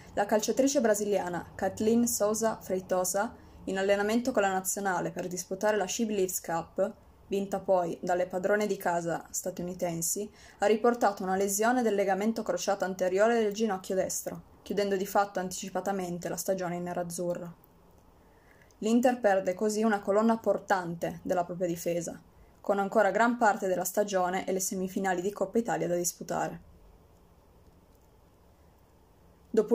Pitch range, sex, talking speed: 180-210 Hz, female, 135 wpm